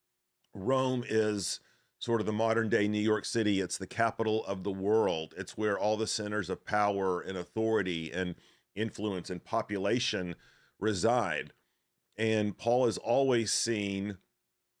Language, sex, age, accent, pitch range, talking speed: English, male, 40-59, American, 95-115 Hz, 140 wpm